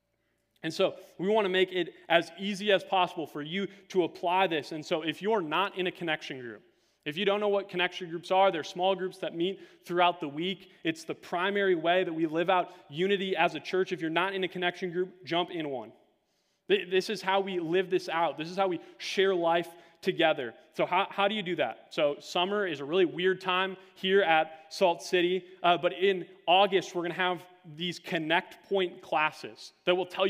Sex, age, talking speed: male, 20-39, 220 wpm